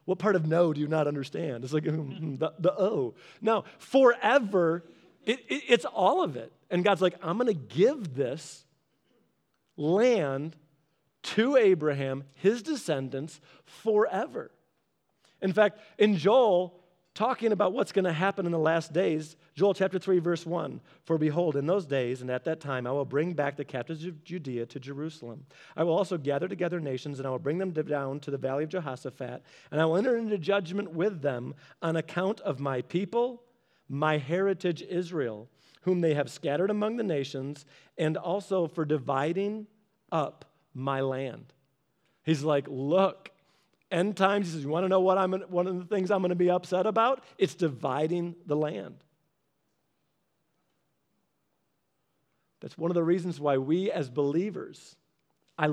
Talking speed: 170 wpm